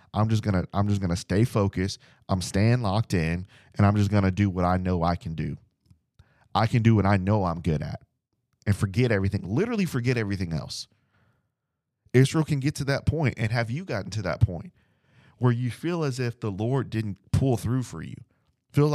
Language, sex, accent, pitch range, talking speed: English, male, American, 105-135 Hz, 205 wpm